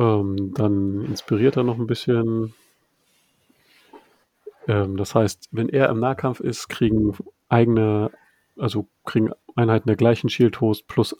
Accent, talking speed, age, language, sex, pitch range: German, 120 wpm, 40-59, German, male, 105-120 Hz